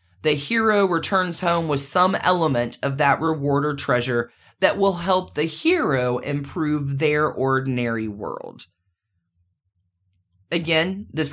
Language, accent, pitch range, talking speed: English, American, 125-180 Hz, 120 wpm